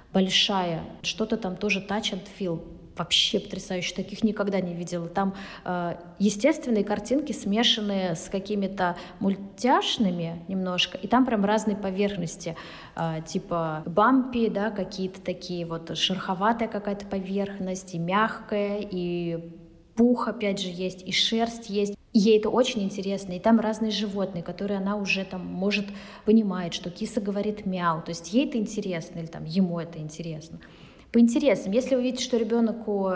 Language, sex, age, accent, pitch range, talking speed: Russian, female, 20-39, native, 180-220 Hz, 150 wpm